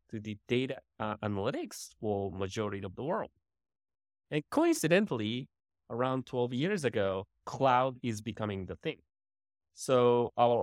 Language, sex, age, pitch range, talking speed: English, male, 20-39, 95-120 Hz, 120 wpm